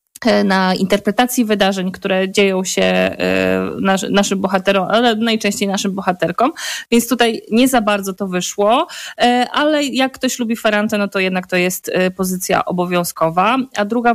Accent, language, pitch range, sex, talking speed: native, Polish, 190-230 Hz, female, 155 wpm